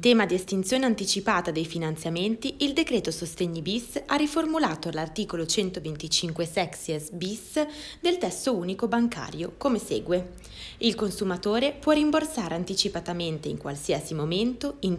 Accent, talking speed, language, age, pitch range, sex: native, 125 wpm, Italian, 20-39, 170-245 Hz, female